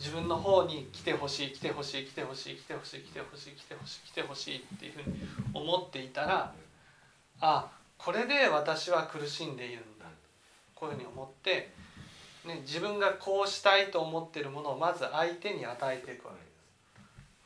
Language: Japanese